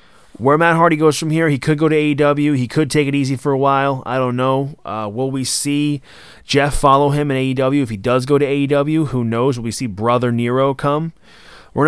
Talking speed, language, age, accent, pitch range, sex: 230 wpm, English, 20-39, American, 110-145 Hz, male